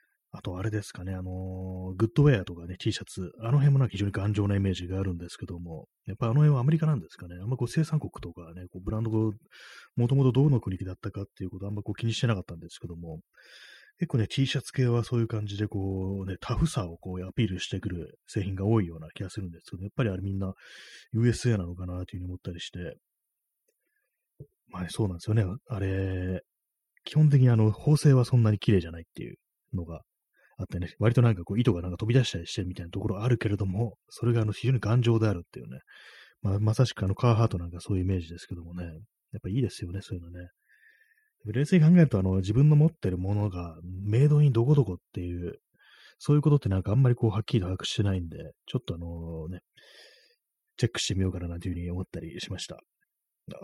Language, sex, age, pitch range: Japanese, male, 30-49, 90-120 Hz